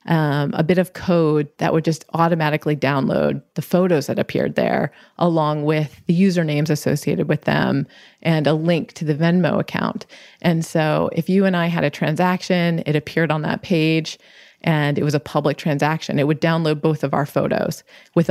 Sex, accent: female, American